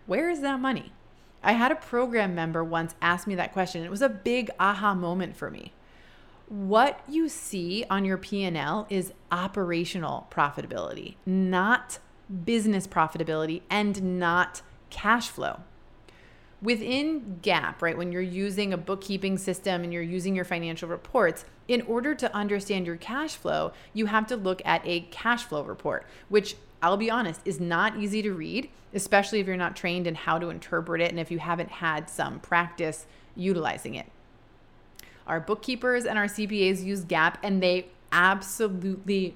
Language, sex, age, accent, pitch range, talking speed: English, female, 30-49, American, 175-210 Hz, 165 wpm